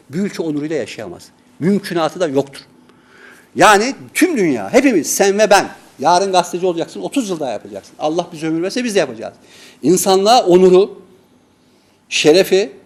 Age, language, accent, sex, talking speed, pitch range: 60-79, Turkish, native, male, 135 wpm, 150-195 Hz